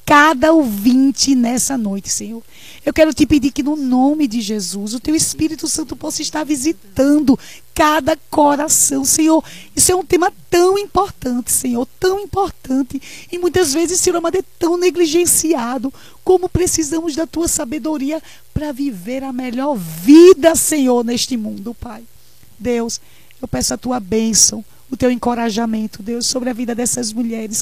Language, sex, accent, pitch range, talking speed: Portuguese, female, Brazilian, 225-305 Hz, 150 wpm